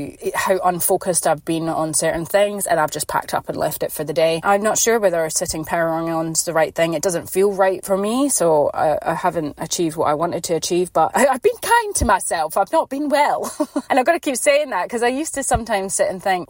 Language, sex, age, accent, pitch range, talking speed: English, female, 30-49, British, 165-210 Hz, 260 wpm